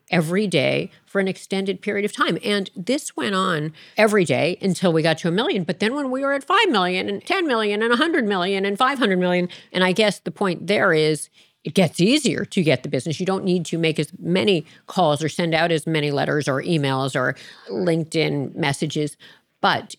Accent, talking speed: American, 215 wpm